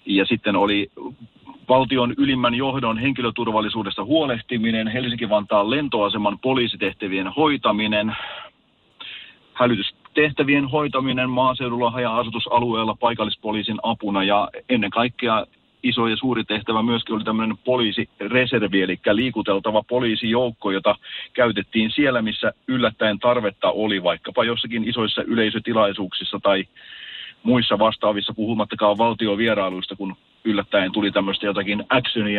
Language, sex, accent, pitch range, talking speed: Finnish, male, native, 105-120 Hz, 100 wpm